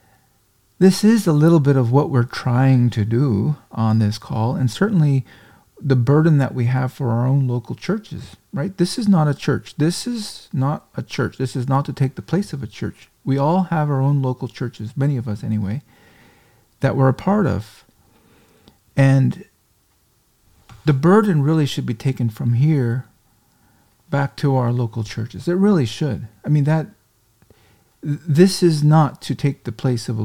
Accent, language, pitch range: American, English, 115-150 Hz